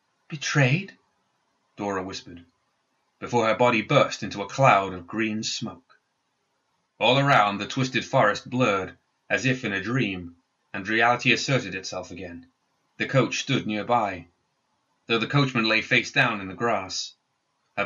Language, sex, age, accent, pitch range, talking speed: English, male, 30-49, British, 95-125 Hz, 145 wpm